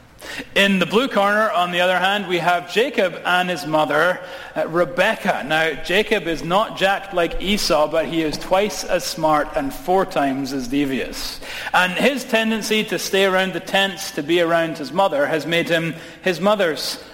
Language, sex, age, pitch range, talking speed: English, male, 40-59, 165-215 Hz, 180 wpm